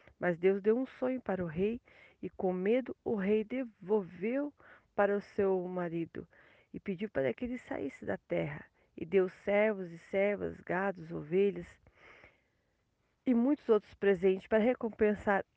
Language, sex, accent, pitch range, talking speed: Portuguese, female, Brazilian, 190-250 Hz, 150 wpm